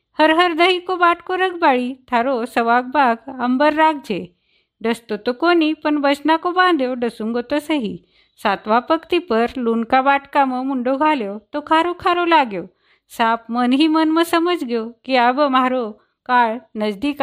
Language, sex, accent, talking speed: Hindi, female, native, 165 wpm